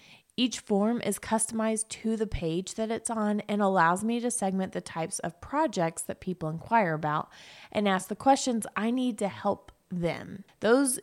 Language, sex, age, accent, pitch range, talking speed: English, female, 20-39, American, 185-230 Hz, 180 wpm